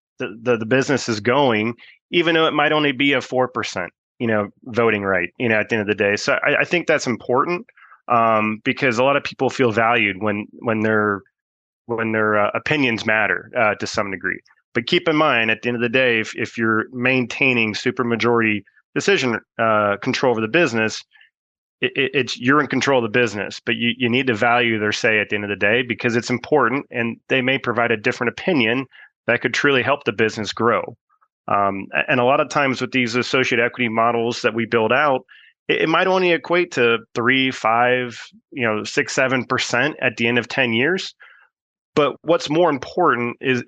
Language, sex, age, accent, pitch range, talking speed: English, male, 30-49, American, 110-130 Hz, 210 wpm